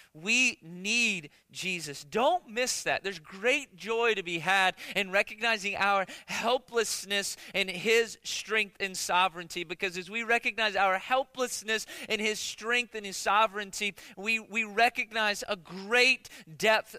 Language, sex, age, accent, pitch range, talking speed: English, male, 30-49, American, 140-215 Hz, 140 wpm